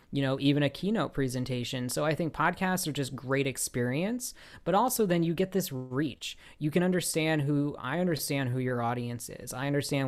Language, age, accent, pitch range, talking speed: English, 30-49, American, 130-155 Hz, 195 wpm